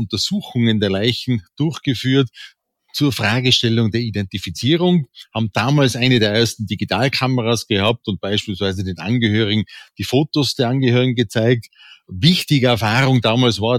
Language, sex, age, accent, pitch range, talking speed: German, male, 40-59, Austrian, 110-135 Hz, 120 wpm